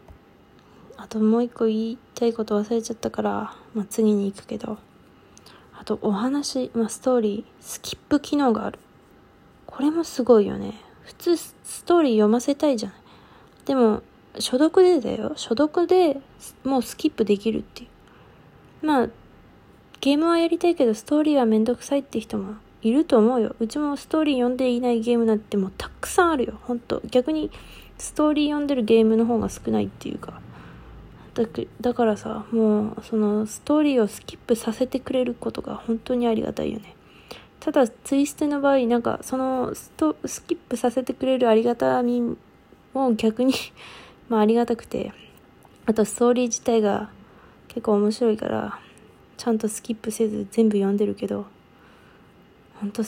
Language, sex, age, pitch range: Japanese, female, 20-39, 215-265 Hz